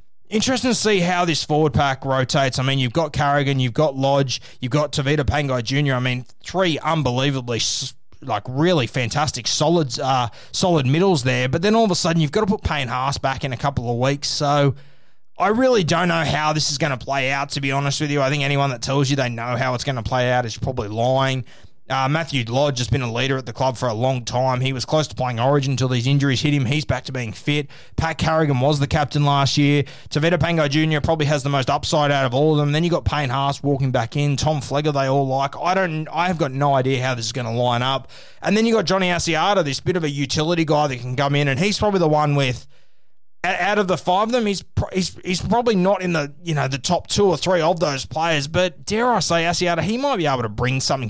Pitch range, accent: 130-160 Hz, Australian